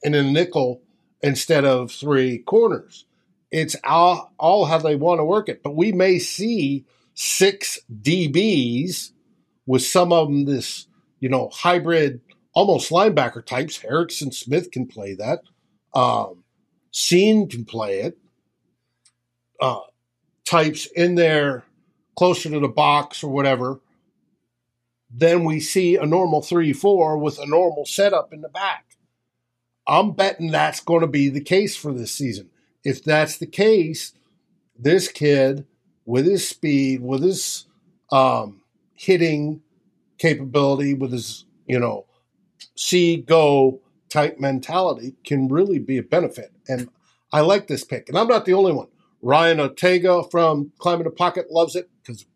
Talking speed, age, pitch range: 140 wpm, 50-69, 130-175 Hz